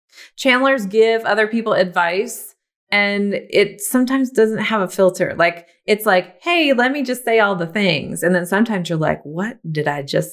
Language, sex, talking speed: English, female, 185 wpm